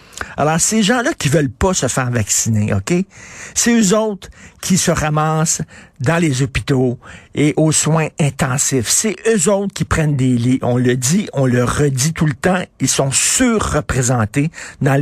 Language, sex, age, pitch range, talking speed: French, male, 60-79, 130-180 Hz, 170 wpm